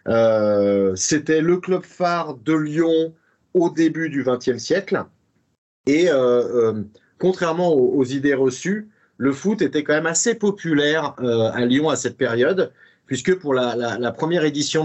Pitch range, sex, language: 125-160 Hz, male, French